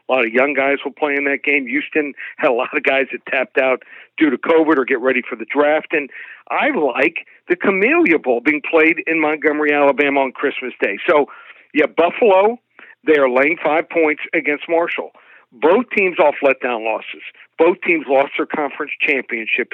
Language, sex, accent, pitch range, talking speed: English, male, American, 140-165 Hz, 190 wpm